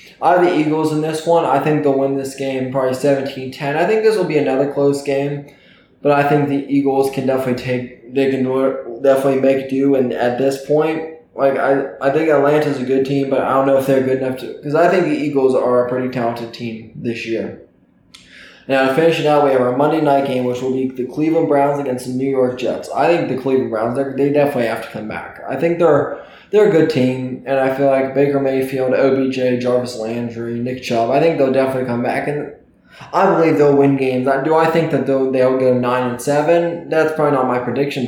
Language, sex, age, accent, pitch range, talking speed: English, male, 20-39, American, 125-140 Hz, 235 wpm